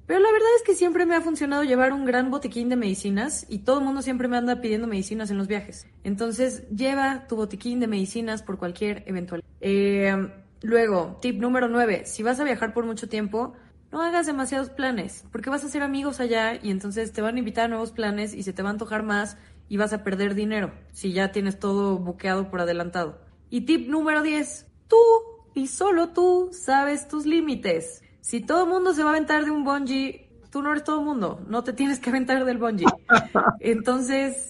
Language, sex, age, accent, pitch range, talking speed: Spanish, female, 20-39, Mexican, 200-275 Hz, 210 wpm